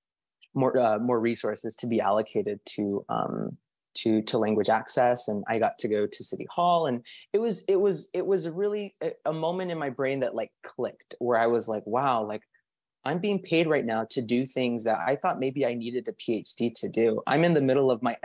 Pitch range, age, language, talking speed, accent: 110-140 Hz, 20-39, English, 220 wpm, American